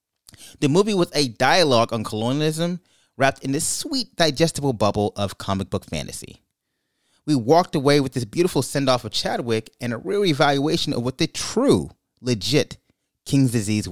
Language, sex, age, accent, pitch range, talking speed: English, male, 30-49, American, 100-145 Hz, 160 wpm